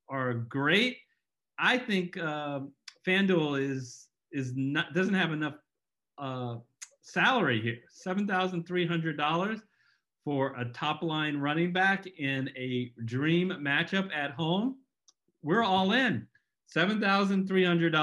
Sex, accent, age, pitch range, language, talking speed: male, American, 40-59, 155-215 Hz, English, 105 wpm